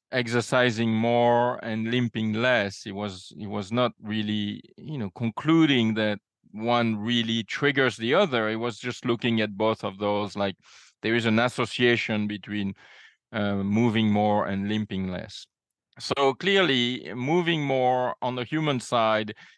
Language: English